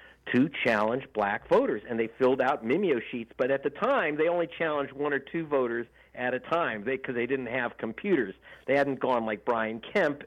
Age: 50-69